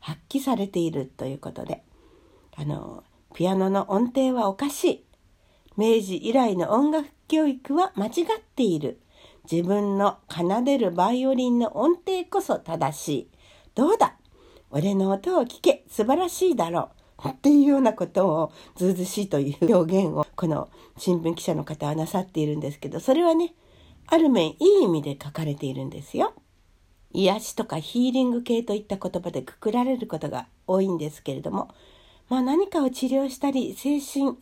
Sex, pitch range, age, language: female, 170-280 Hz, 60-79, Japanese